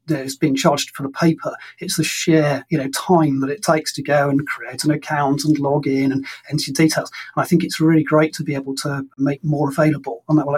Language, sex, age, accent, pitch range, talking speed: English, male, 30-49, British, 135-160 Hz, 245 wpm